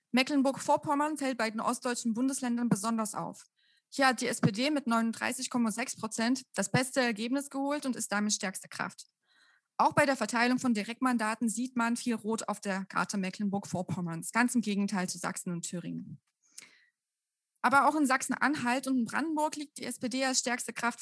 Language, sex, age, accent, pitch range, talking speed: German, female, 20-39, German, 220-275 Hz, 165 wpm